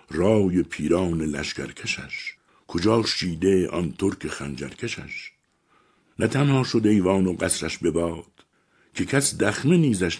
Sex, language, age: male, Persian, 60-79